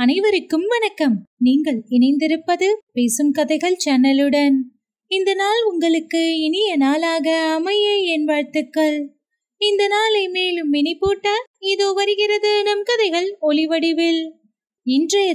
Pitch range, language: 280-395 Hz, Tamil